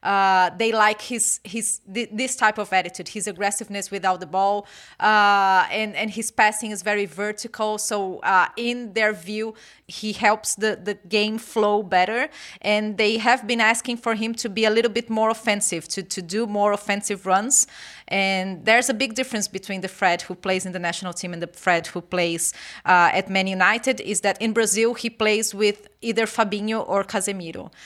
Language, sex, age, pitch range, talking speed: English, female, 30-49, 185-220 Hz, 190 wpm